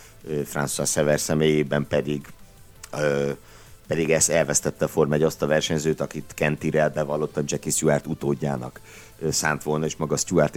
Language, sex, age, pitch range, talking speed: Hungarian, male, 50-69, 75-90 Hz, 135 wpm